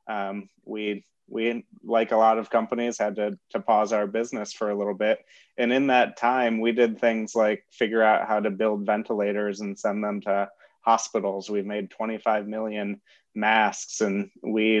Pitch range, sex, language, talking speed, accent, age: 105-115 Hz, male, English, 180 wpm, American, 30-49